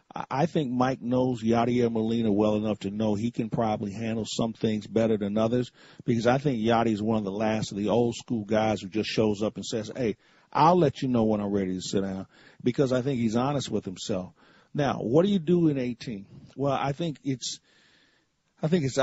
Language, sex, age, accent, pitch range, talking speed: English, male, 50-69, American, 110-135 Hz, 220 wpm